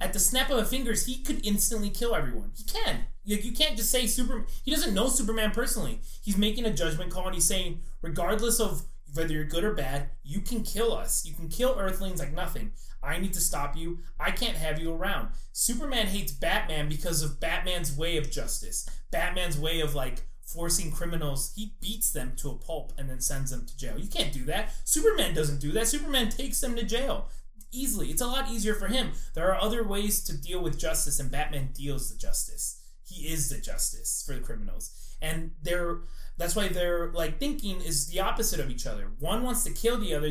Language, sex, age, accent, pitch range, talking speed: English, male, 20-39, American, 150-220 Hz, 215 wpm